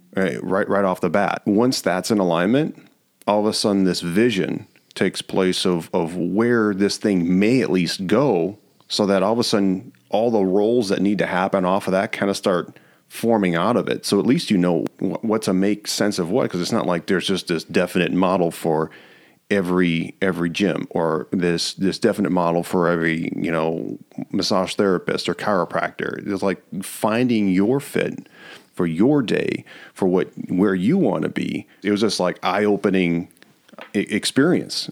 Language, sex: English, male